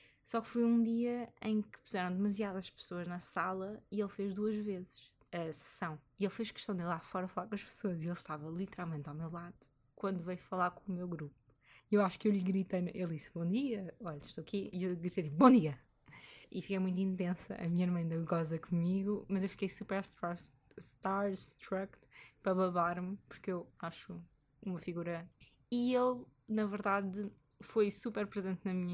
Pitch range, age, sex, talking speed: 170-205 Hz, 20-39, female, 195 wpm